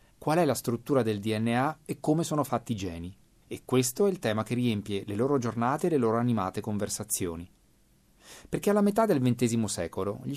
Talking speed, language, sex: 195 wpm, Italian, male